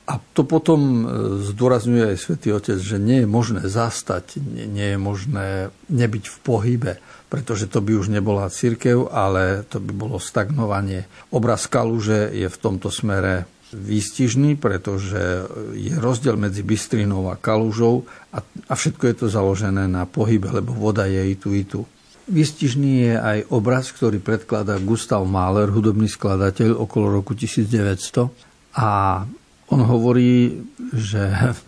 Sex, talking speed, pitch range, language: male, 140 wpm, 100-120 Hz, Slovak